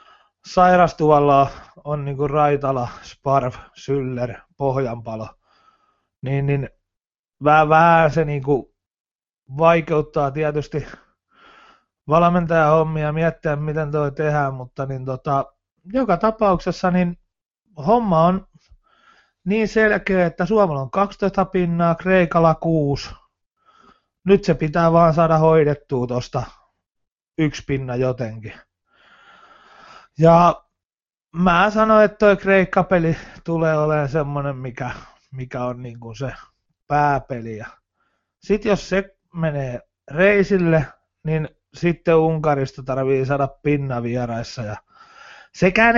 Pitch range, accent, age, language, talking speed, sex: 140-185 Hz, native, 30-49, Finnish, 90 wpm, male